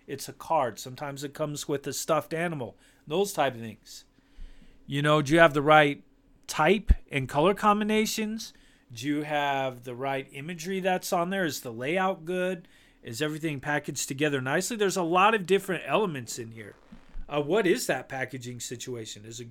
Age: 40-59